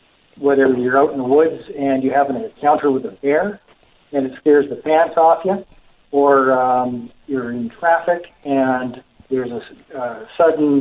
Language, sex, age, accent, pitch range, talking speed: English, male, 50-69, American, 130-160 Hz, 170 wpm